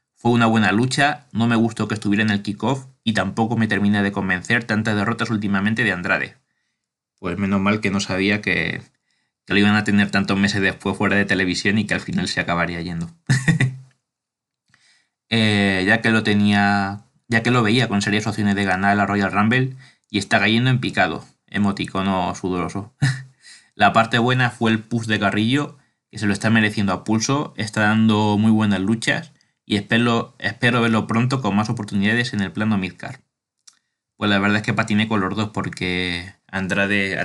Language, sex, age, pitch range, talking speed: Spanish, male, 20-39, 100-115 Hz, 190 wpm